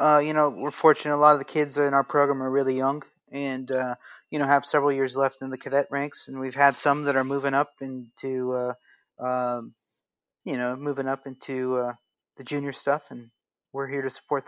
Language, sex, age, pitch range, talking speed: English, male, 30-49, 130-145 Hz, 220 wpm